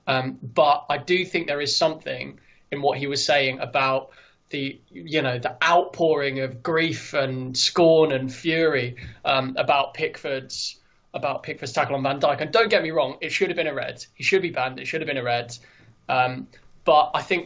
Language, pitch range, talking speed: English, 130-150 Hz, 210 wpm